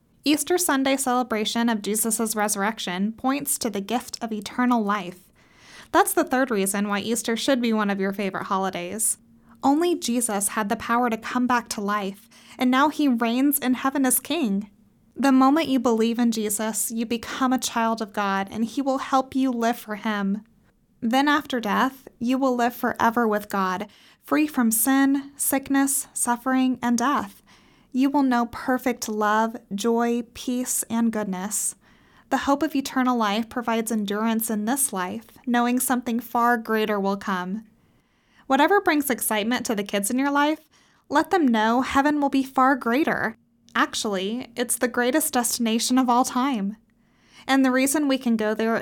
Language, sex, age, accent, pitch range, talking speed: English, female, 20-39, American, 215-265 Hz, 170 wpm